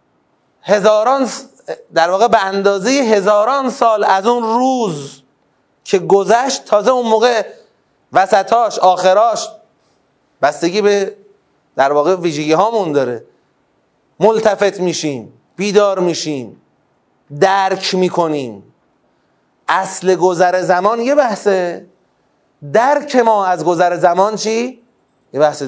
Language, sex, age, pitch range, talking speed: Persian, male, 30-49, 155-210 Hz, 100 wpm